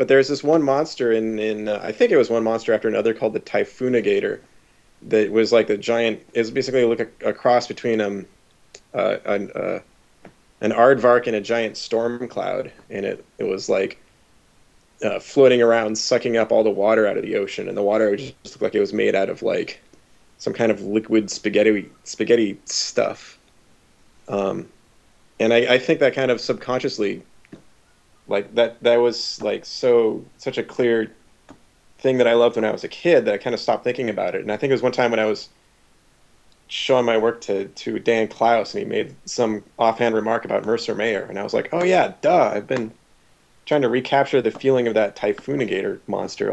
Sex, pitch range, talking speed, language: male, 110-125 Hz, 205 wpm, English